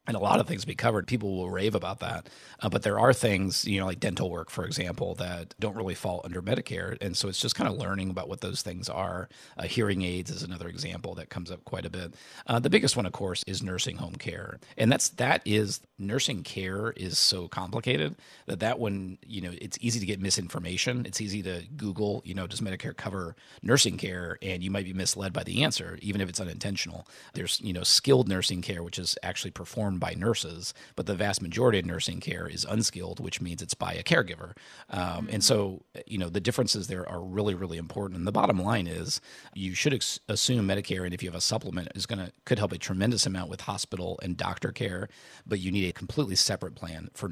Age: 40-59